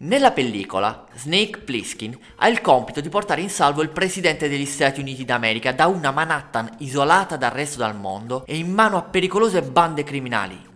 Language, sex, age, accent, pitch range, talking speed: Italian, male, 20-39, native, 120-190 Hz, 180 wpm